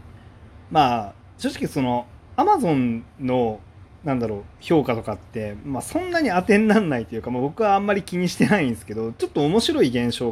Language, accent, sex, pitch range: Japanese, native, male, 105-150 Hz